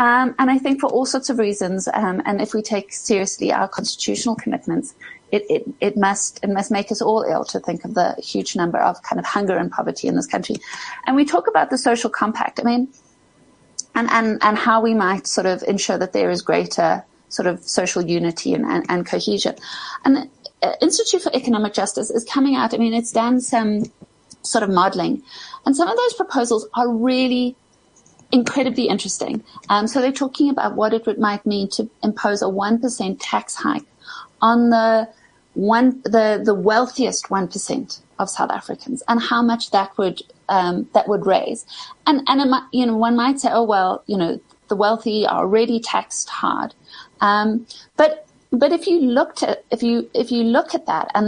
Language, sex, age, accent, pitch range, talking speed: English, female, 30-49, British, 210-260 Hz, 195 wpm